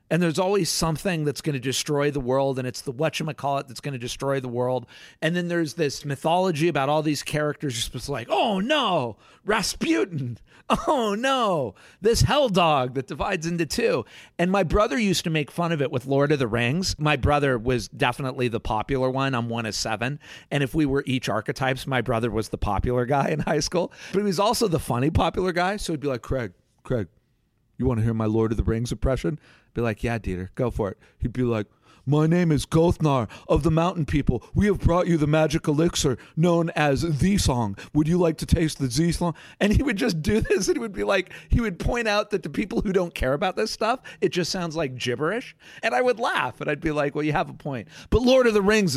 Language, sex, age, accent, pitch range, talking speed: English, male, 40-59, American, 125-170 Hz, 235 wpm